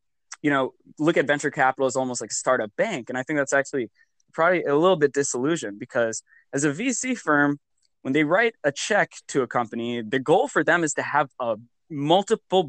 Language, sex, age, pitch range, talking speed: English, male, 10-29, 130-165 Hz, 205 wpm